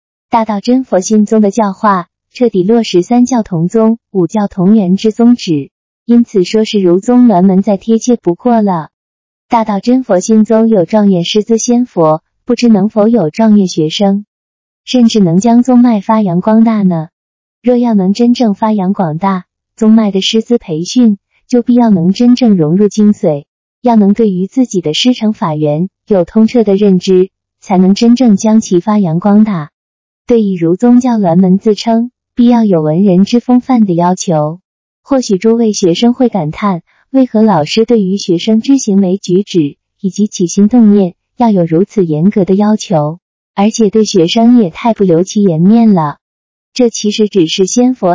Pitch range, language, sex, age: 185-230 Hz, Chinese, female, 20-39